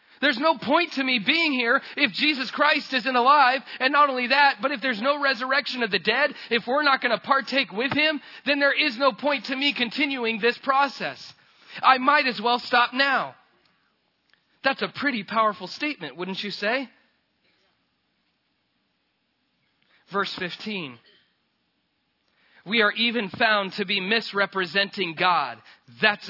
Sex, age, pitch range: male, 30-49, 195-260 Hz